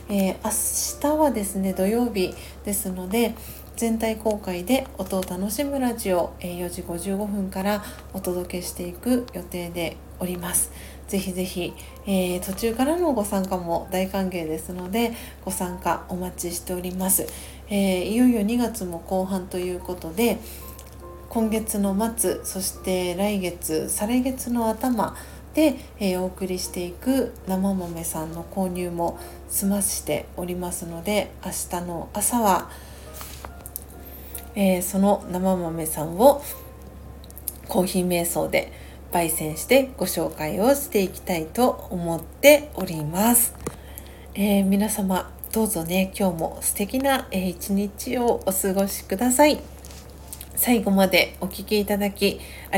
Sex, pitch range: female, 175-210 Hz